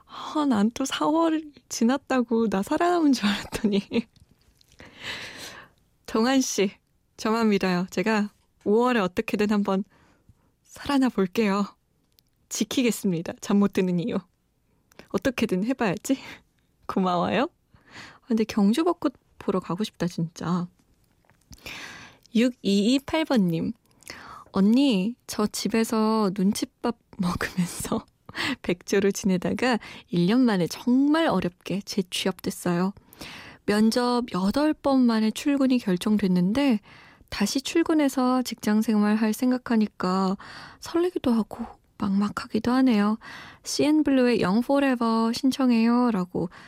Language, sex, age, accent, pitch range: Korean, female, 20-39, native, 200-260 Hz